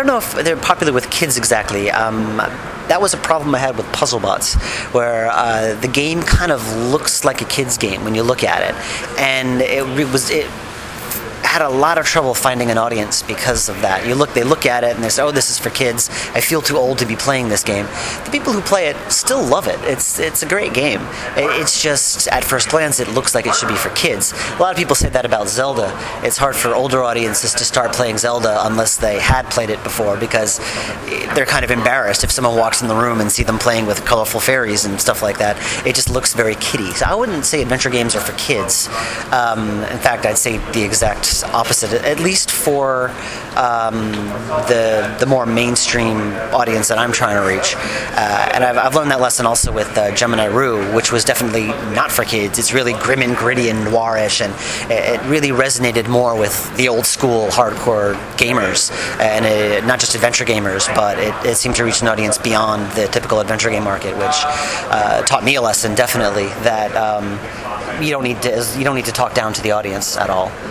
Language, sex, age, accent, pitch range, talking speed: English, male, 40-59, American, 110-125 Hz, 220 wpm